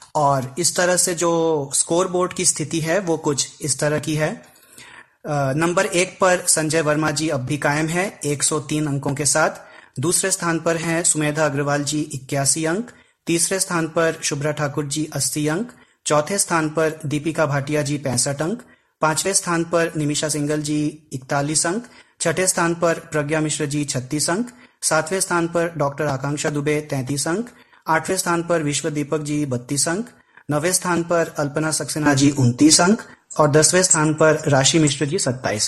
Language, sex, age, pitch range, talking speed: Hindi, male, 30-49, 145-170 Hz, 170 wpm